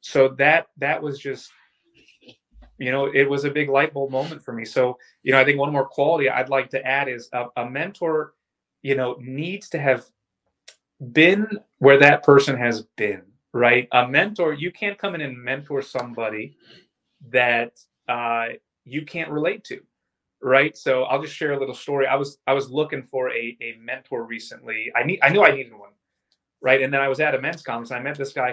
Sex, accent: male, American